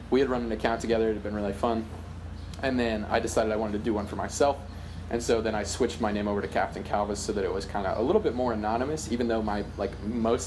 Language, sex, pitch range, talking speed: English, male, 95-115 Hz, 280 wpm